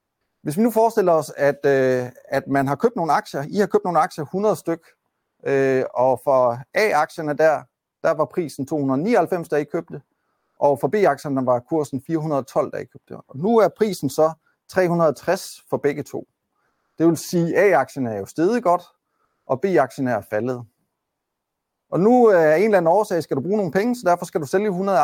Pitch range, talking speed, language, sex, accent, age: 130-175 Hz, 195 wpm, Danish, male, native, 30-49